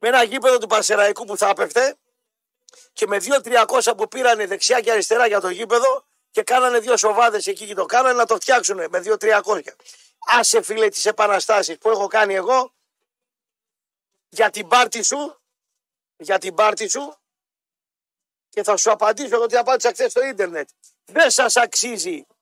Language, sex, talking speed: Greek, male, 160 wpm